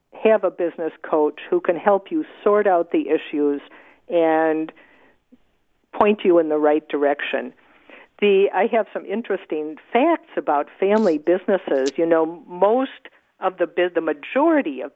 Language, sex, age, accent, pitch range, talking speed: English, female, 50-69, American, 160-215 Hz, 145 wpm